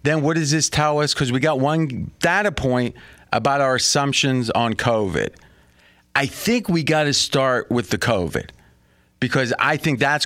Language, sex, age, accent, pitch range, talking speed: English, male, 40-59, American, 100-140 Hz, 175 wpm